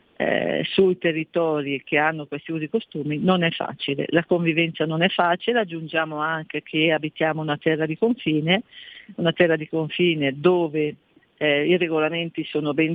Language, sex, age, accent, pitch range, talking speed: Italian, female, 50-69, native, 150-175 Hz, 155 wpm